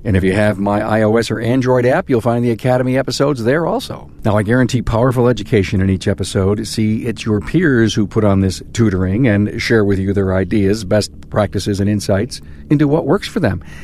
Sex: male